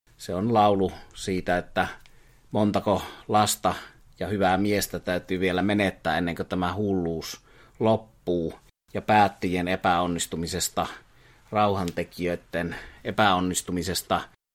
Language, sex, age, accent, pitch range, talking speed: Finnish, male, 30-49, native, 90-105 Hz, 95 wpm